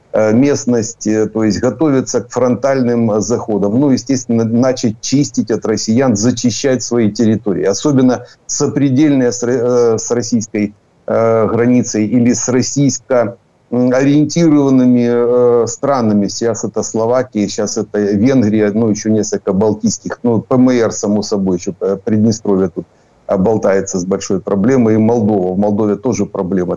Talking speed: 115 wpm